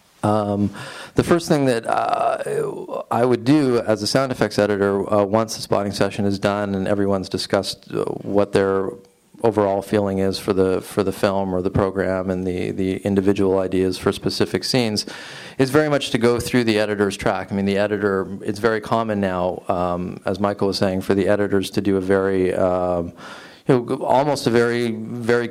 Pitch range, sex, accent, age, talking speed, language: 95-110 Hz, male, American, 40-59, 190 wpm, English